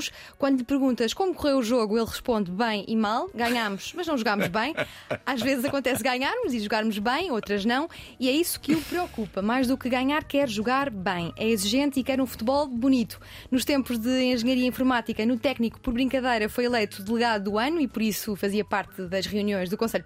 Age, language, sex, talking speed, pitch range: 20-39, Portuguese, female, 205 wpm, 215-275 Hz